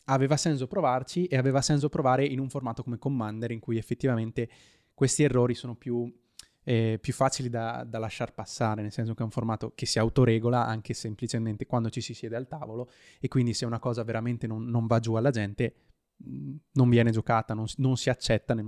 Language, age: Italian, 20-39